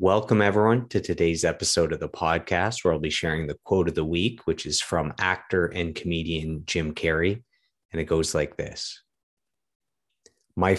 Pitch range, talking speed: 80-95 Hz, 170 wpm